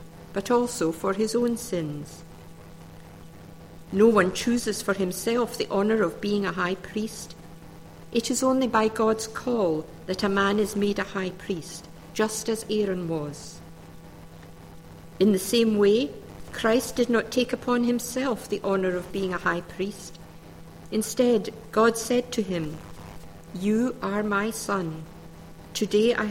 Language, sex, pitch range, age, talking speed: English, female, 180-230 Hz, 50-69, 145 wpm